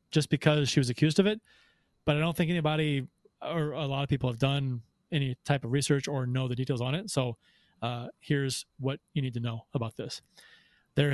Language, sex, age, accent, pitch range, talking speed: English, male, 30-49, American, 125-150 Hz, 215 wpm